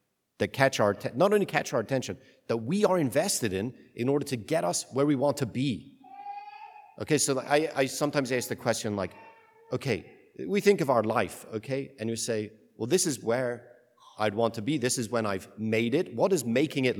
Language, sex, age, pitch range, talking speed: English, male, 40-59, 110-145 Hz, 215 wpm